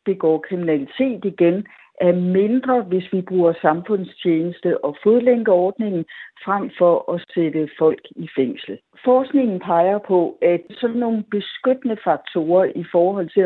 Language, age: Danish, 60-79